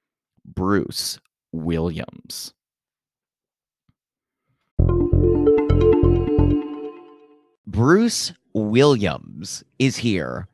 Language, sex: English, male